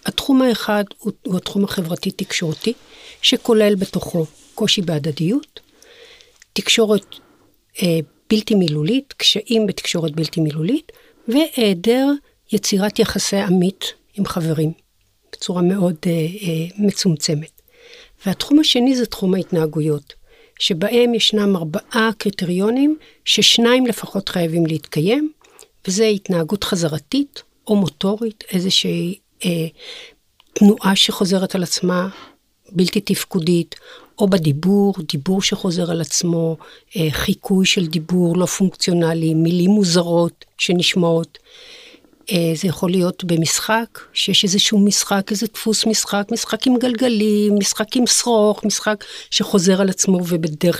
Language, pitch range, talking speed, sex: Hebrew, 175-225 Hz, 110 wpm, female